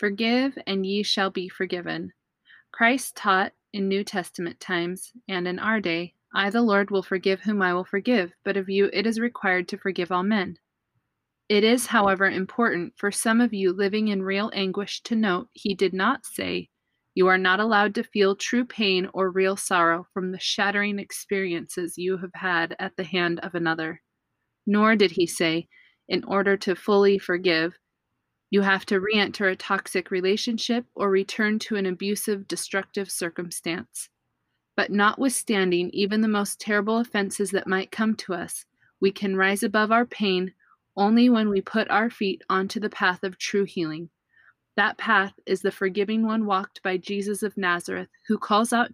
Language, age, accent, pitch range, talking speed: English, 30-49, American, 185-215 Hz, 175 wpm